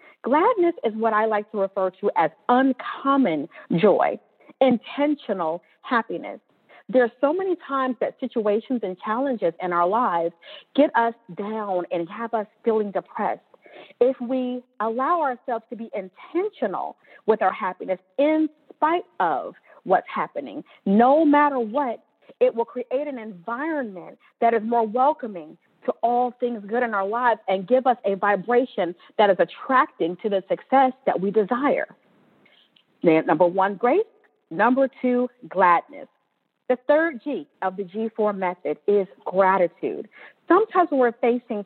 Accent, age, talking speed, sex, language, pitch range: American, 40-59, 145 wpm, female, English, 200-280 Hz